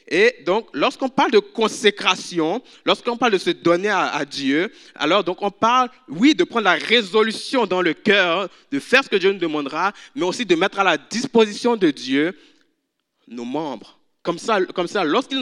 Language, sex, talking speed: French, male, 185 wpm